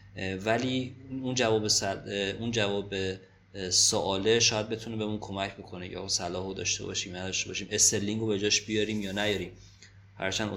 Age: 30-49